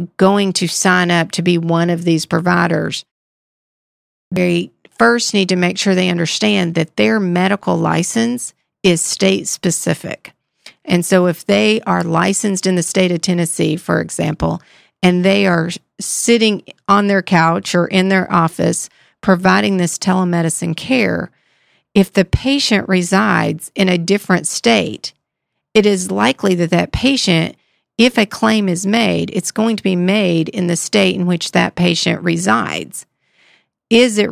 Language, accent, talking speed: English, American, 150 wpm